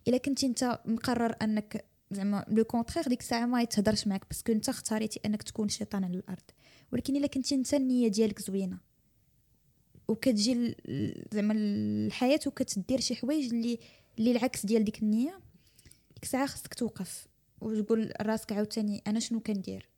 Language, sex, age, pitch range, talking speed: Arabic, female, 20-39, 205-240 Hz, 140 wpm